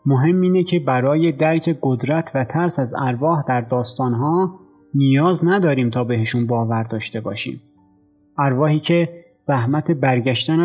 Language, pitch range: Persian, 125-165 Hz